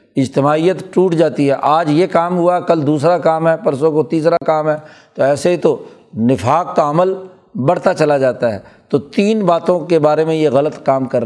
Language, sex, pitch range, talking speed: Urdu, male, 145-175 Hz, 205 wpm